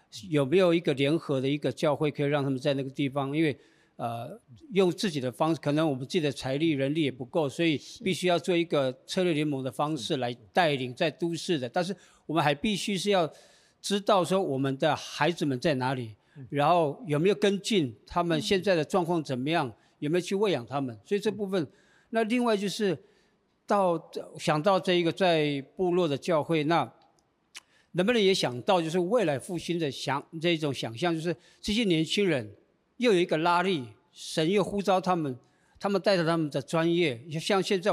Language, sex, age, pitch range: Chinese, male, 50-69, 145-185 Hz